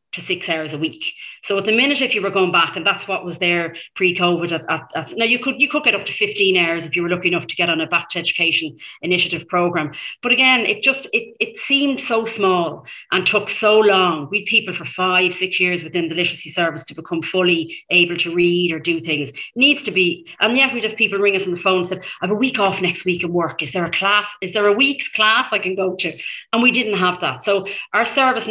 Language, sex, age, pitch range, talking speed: English, female, 30-49, 170-205 Hz, 265 wpm